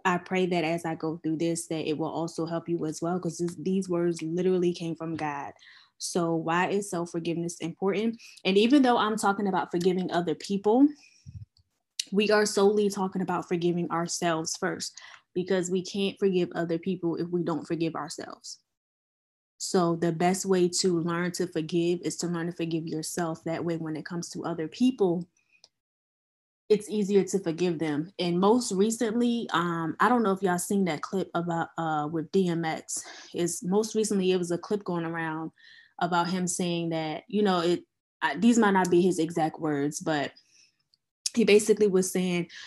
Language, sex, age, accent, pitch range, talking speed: English, female, 10-29, American, 165-195 Hz, 180 wpm